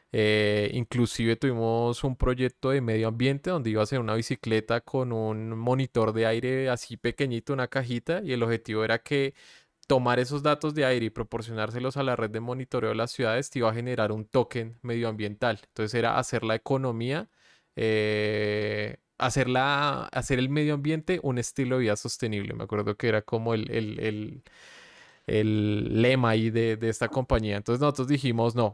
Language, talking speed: Spanish, 180 wpm